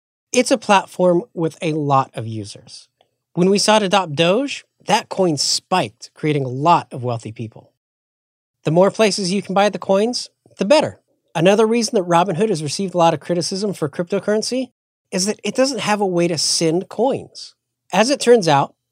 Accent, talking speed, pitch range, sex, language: American, 185 wpm, 150-205 Hz, male, English